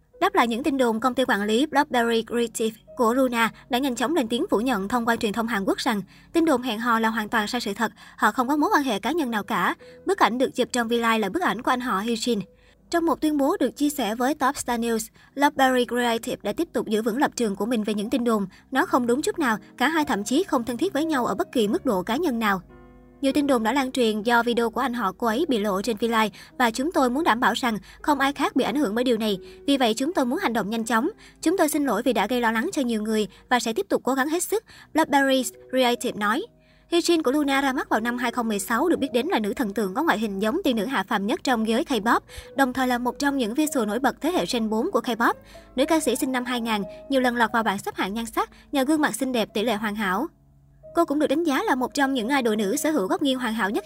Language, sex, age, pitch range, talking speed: Vietnamese, male, 20-39, 225-280 Hz, 290 wpm